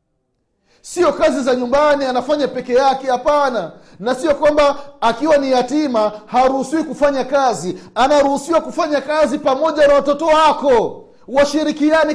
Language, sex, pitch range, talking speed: Swahili, male, 225-295 Hz, 125 wpm